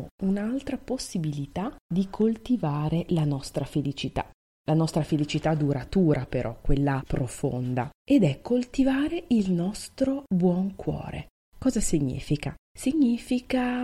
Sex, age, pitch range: female, 30-49, 140-220 Hz